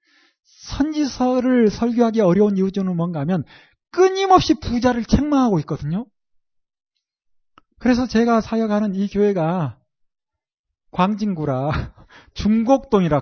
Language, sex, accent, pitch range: Korean, male, native, 195-260 Hz